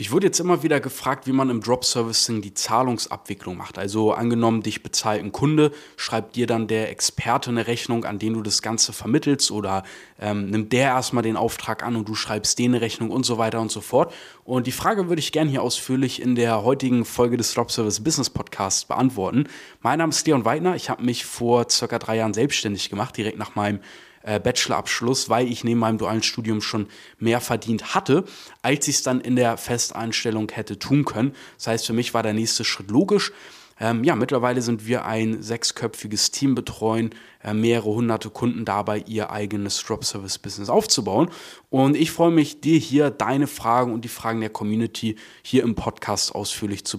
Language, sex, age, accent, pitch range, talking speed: German, male, 20-39, German, 110-130 Hz, 190 wpm